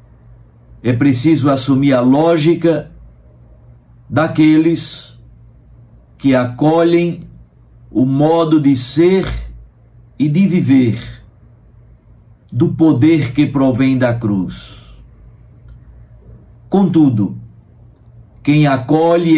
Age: 60-79